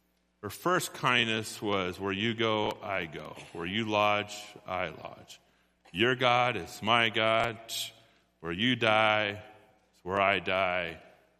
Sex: male